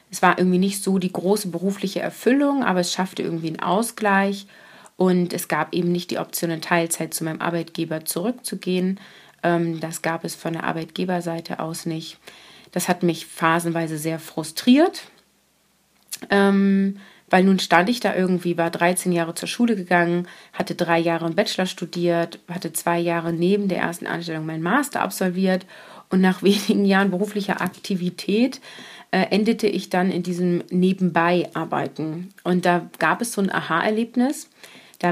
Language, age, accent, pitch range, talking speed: German, 30-49, German, 170-195 Hz, 155 wpm